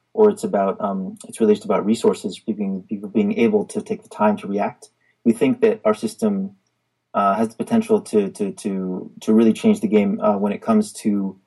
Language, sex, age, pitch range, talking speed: English, male, 30-49, 200-220 Hz, 215 wpm